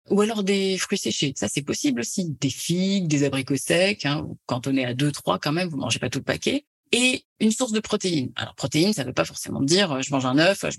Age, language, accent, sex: 30-49, French, French, female